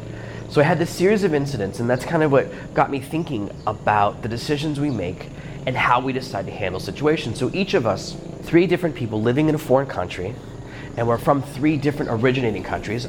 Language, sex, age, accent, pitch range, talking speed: English, male, 30-49, American, 105-145 Hz, 210 wpm